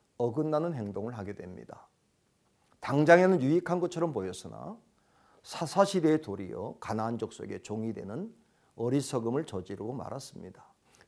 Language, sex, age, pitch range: Korean, male, 50-69, 110-155 Hz